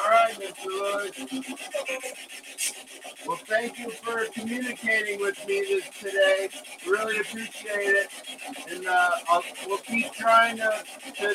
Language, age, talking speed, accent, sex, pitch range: English, 50-69, 115 wpm, American, male, 205-260 Hz